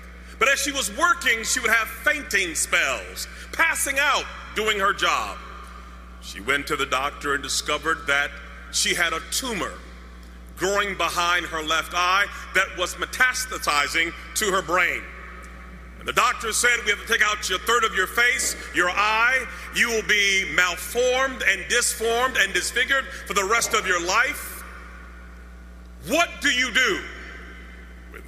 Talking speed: 155 wpm